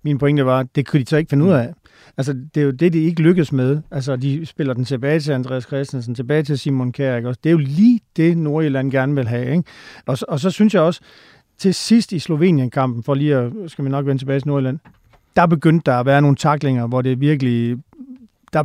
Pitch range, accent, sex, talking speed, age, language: 140-175 Hz, native, male, 250 wpm, 40-59, Danish